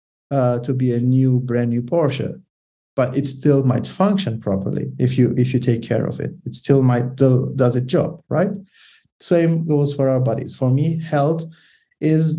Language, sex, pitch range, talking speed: English, male, 120-145 Hz, 190 wpm